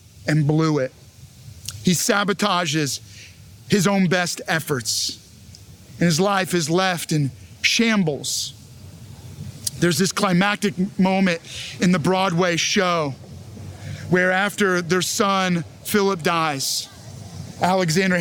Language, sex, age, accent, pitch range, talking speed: English, male, 40-59, American, 120-205 Hz, 100 wpm